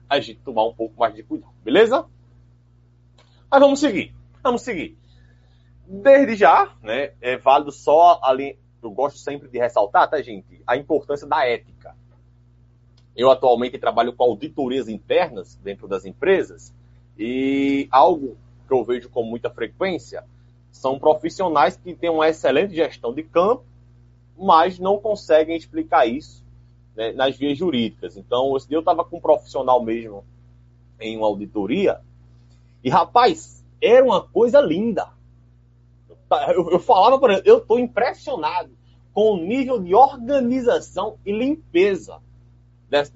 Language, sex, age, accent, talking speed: Portuguese, male, 20-39, Brazilian, 135 wpm